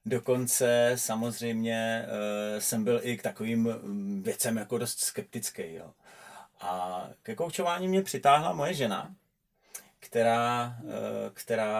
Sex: male